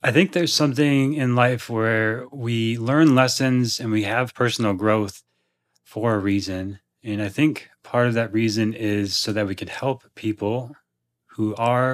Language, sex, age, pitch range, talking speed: English, male, 30-49, 105-125 Hz, 170 wpm